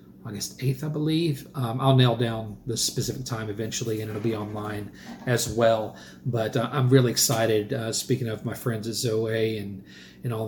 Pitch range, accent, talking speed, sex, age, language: 110-125 Hz, American, 190 wpm, male, 40-59, English